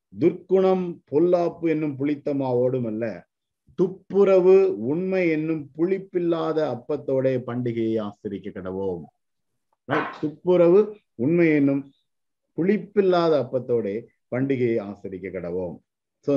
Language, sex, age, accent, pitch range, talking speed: Tamil, male, 50-69, native, 110-155 Hz, 75 wpm